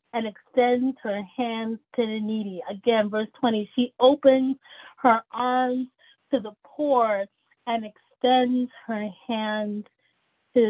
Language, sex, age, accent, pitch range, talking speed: English, female, 30-49, American, 185-245 Hz, 125 wpm